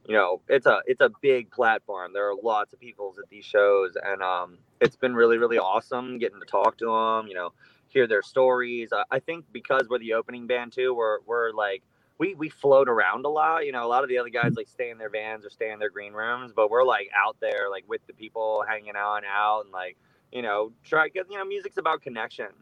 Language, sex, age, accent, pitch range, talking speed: English, male, 20-39, American, 105-150 Hz, 250 wpm